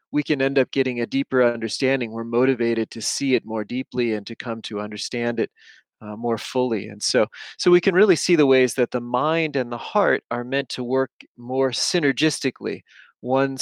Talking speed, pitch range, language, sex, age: 205 wpm, 115-140 Hz, English, male, 30-49